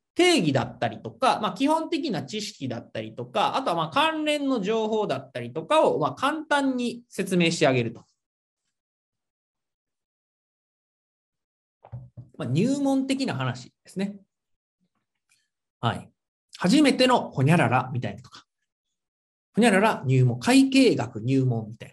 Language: Japanese